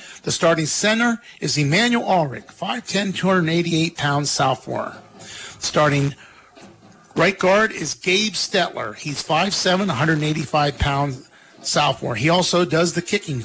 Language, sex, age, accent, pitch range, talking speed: English, male, 50-69, American, 150-190 Hz, 105 wpm